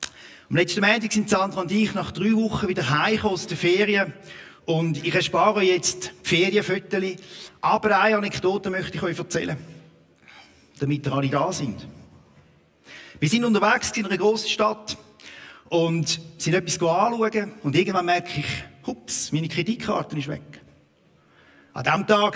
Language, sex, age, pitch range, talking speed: German, male, 50-69, 140-190 Hz, 150 wpm